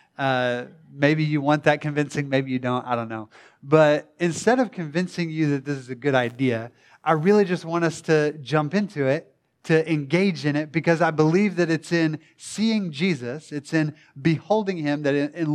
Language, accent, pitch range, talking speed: English, American, 130-165 Hz, 195 wpm